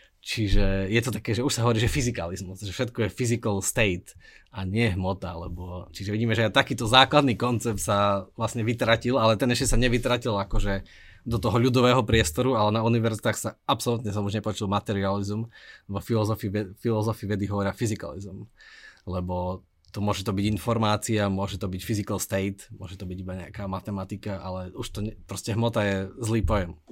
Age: 20-39